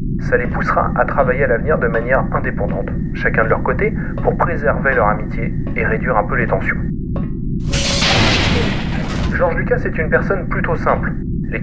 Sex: male